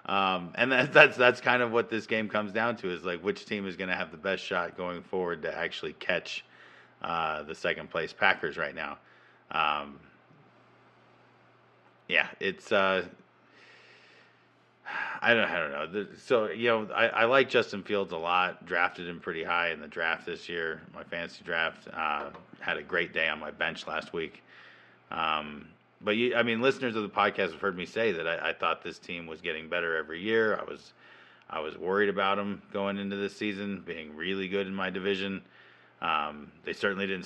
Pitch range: 90-105 Hz